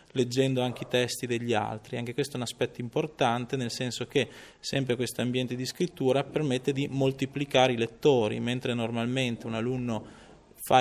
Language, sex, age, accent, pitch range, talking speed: Italian, male, 20-39, native, 115-135 Hz, 165 wpm